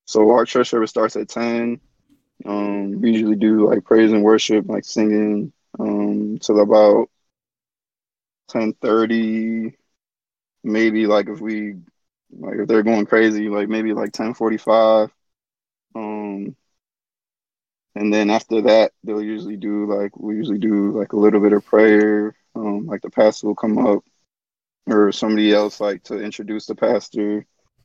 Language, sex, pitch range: English, male, 105-115 Hz